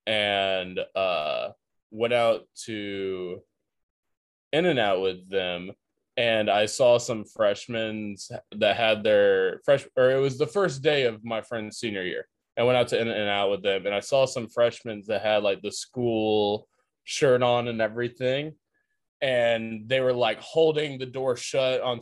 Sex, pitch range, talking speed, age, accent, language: male, 110-145 Hz, 170 wpm, 20-39, American, English